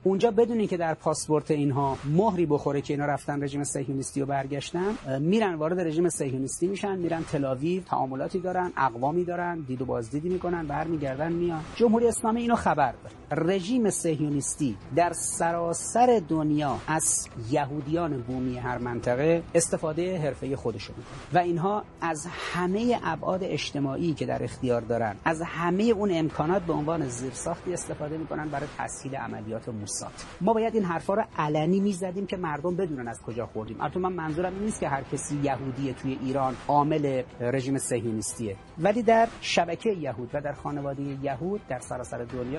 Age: 40-59